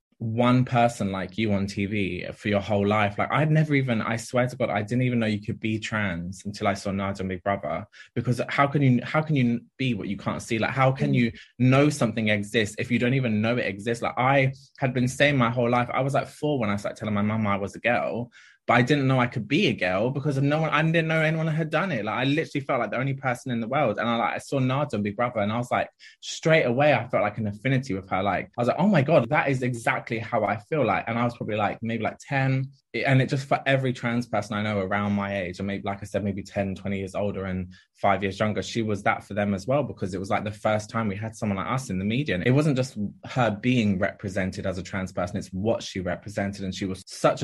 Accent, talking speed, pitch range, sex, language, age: British, 280 wpm, 100-130 Hz, male, English, 20-39